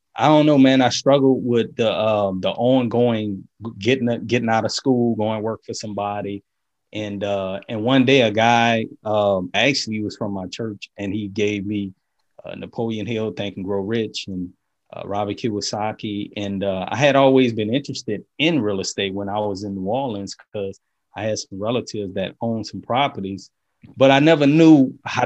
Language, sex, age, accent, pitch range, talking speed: English, male, 30-49, American, 105-130 Hz, 185 wpm